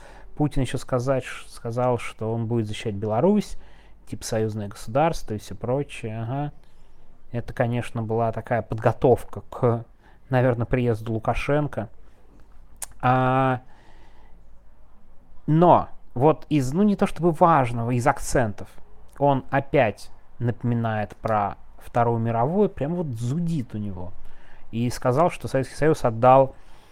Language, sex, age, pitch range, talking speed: Russian, male, 30-49, 115-155 Hz, 120 wpm